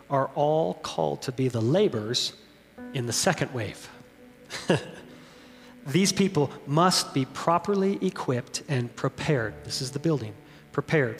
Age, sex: 40-59, male